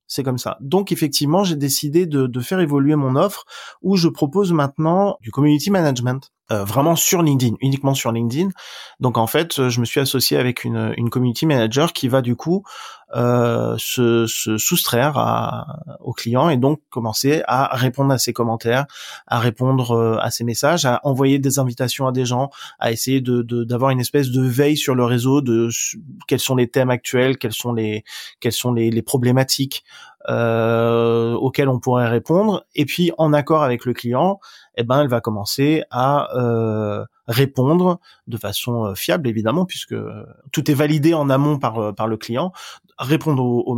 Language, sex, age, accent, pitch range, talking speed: French, male, 20-39, French, 120-150 Hz, 180 wpm